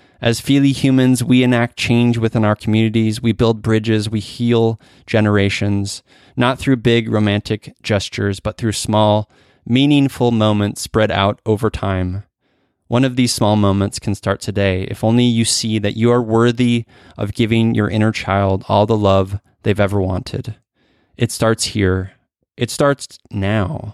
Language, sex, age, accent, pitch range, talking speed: English, male, 20-39, American, 100-120 Hz, 155 wpm